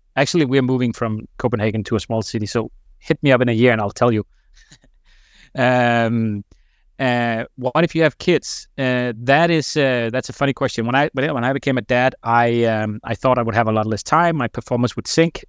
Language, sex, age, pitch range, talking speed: English, male, 30-49, 110-130 Hz, 220 wpm